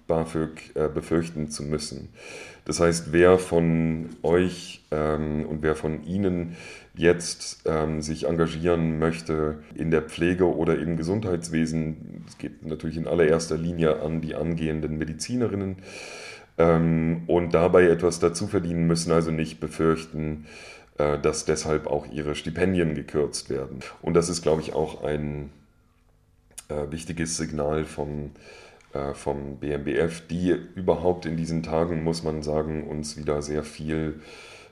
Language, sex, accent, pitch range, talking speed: German, male, German, 75-85 Hz, 135 wpm